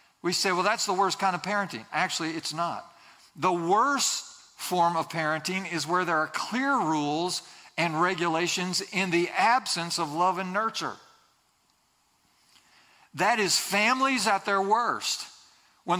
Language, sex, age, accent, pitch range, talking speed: English, male, 50-69, American, 175-240 Hz, 145 wpm